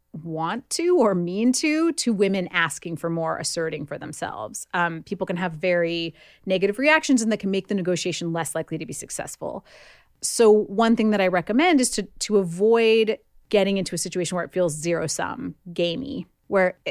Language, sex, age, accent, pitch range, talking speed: English, female, 30-49, American, 175-215 Hz, 185 wpm